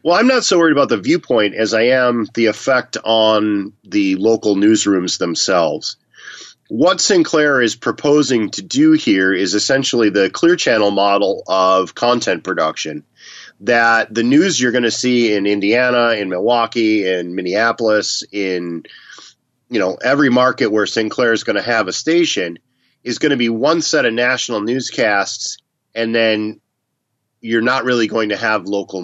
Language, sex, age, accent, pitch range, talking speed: English, male, 30-49, American, 105-125 Hz, 165 wpm